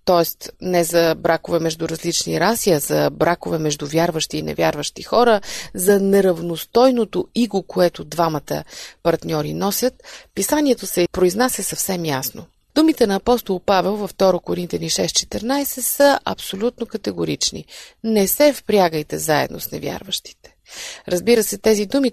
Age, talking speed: 30-49, 130 wpm